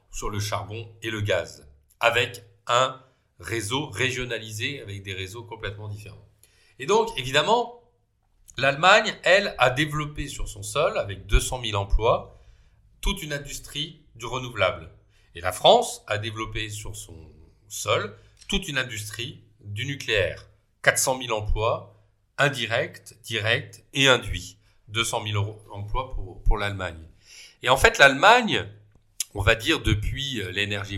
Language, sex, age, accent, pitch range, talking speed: French, male, 40-59, French, 100-125 Hz, 135 wpm